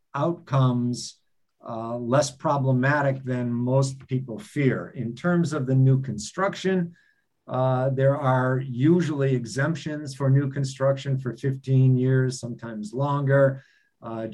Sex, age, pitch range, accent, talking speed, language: male, 50-69, 120-145 Hz, American, 115 wpm, English